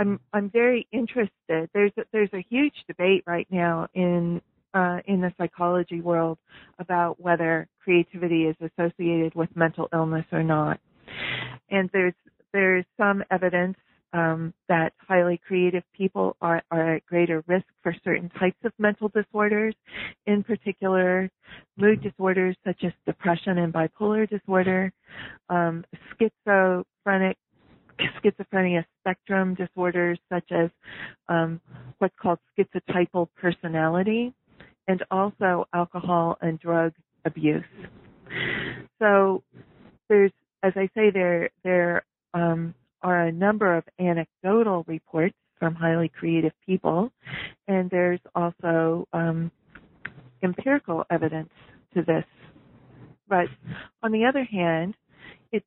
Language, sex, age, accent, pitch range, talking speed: English, female, 30-49, American, 170-195 Hz, 115 wpm